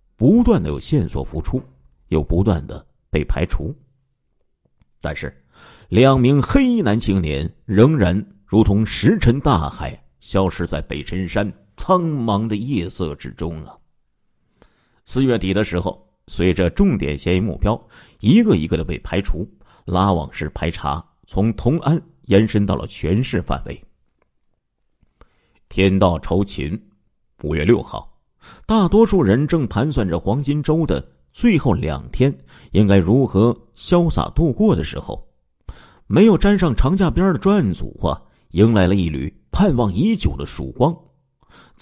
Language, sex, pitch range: Chinese, male, 85-140 Hz